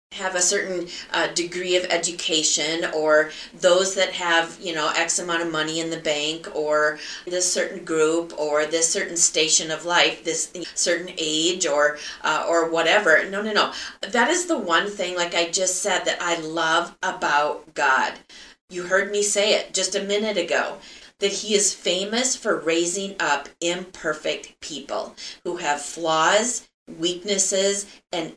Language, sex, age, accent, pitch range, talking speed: English, female, 30-49, American, 165-200 Hz, 165 wpm